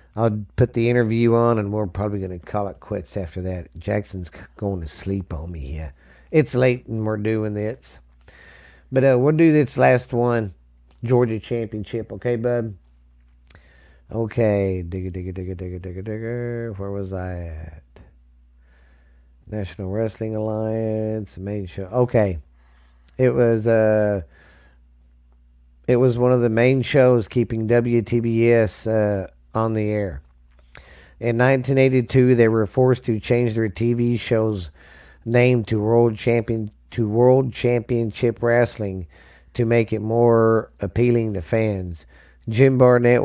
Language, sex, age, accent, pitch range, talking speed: English, male, 40-59, American, 85-115 Hz, 135 wpm